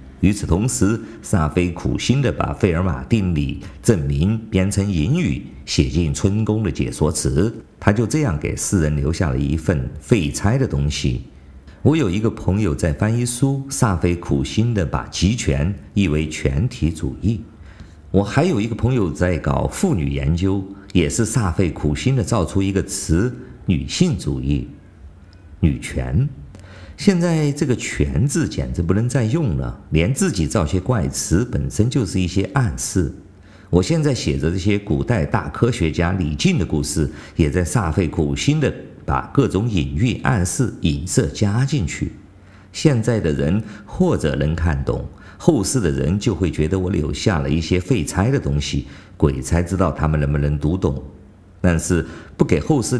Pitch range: 75-110 Hz